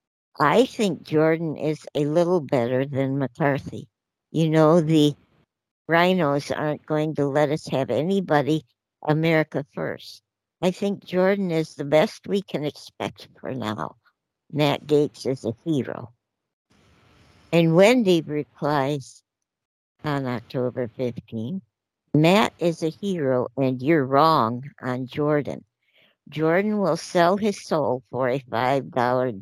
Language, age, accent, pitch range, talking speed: English, 60-79, American, 130-170 Hz, 125 wpm